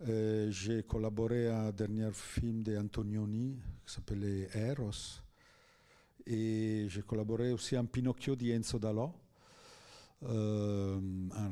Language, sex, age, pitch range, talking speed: French, male, 50-69, 100-115 Hz, 120 wpm